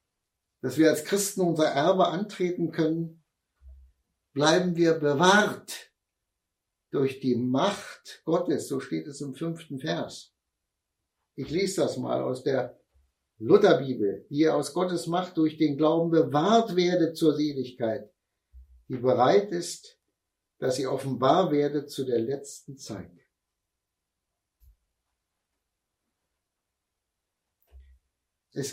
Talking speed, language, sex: 105 wpm, German, male